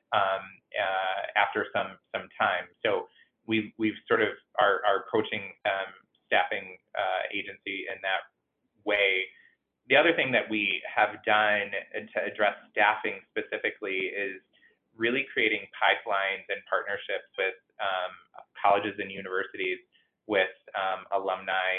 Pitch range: 95-115 Hz